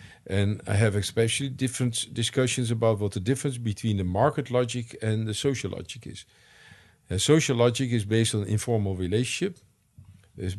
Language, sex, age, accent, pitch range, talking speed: English, male, 50-69, Dutch, 95-115 Hz, 160 wpm